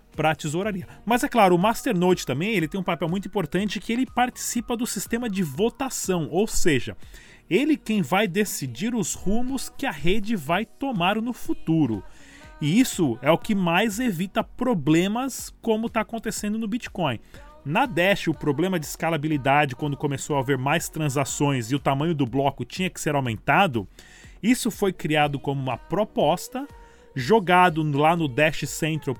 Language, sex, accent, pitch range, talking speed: Portuguese, male, Brazilian, 150-225 Hz, 170 wpm